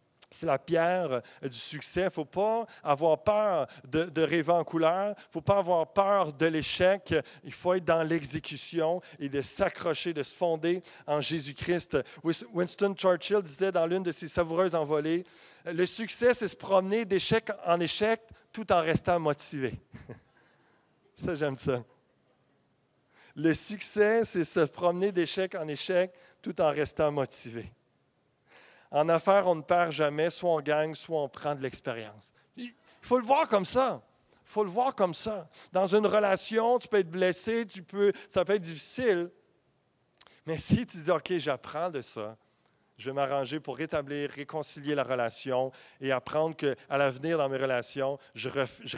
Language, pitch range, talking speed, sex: French, 145-190 Hz, 165 wpm, male